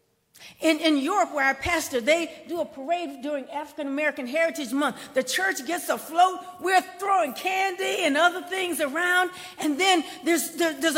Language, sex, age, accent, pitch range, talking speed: English, female, 50-69, American, 270-345 Hz, 160 wpm